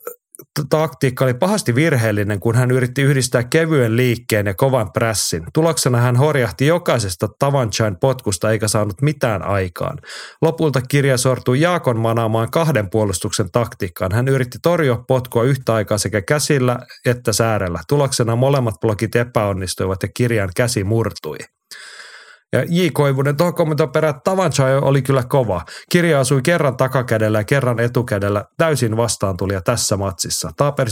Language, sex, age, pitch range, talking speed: Finnish, male, 30-49, 110-140 Hz, 130 wpm